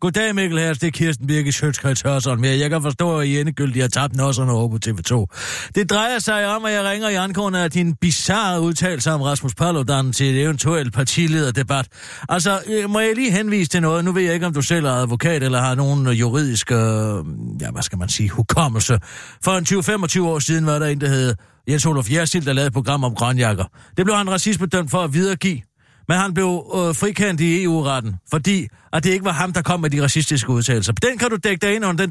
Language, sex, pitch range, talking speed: Danish, male, 130-180 Hz, 215 wpm